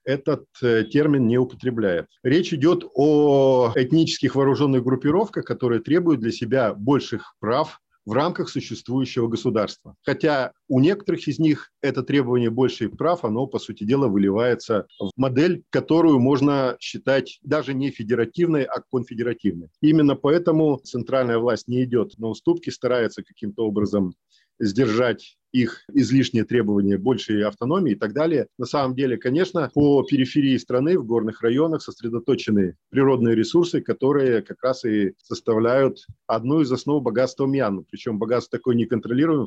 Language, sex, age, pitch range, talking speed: Russian, male, 40-59, 115-140 Hz, 140 wpm